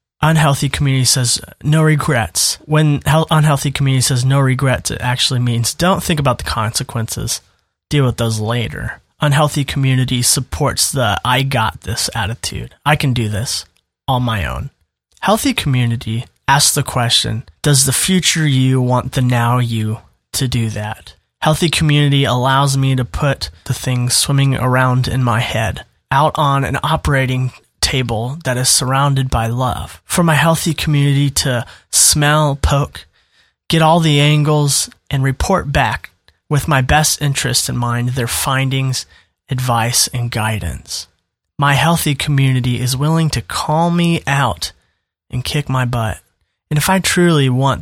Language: English